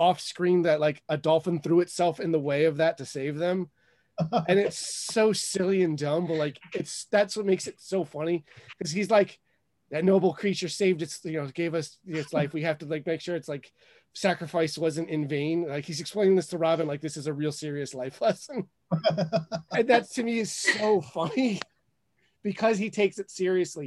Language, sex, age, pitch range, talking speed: English, male, 30-49, 135-180 Hz, 210 wpm